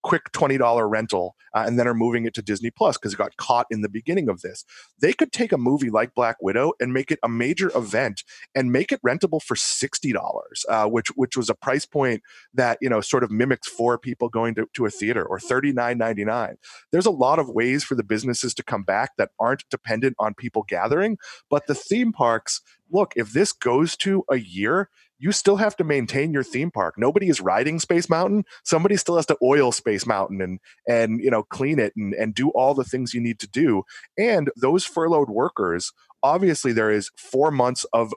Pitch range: 115-160 Hz